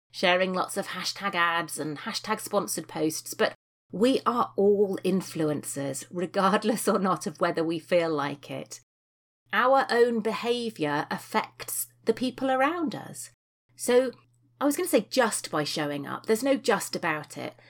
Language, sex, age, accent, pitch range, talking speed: English, female, 30-49, British, 160-225 Hz, 155 wpm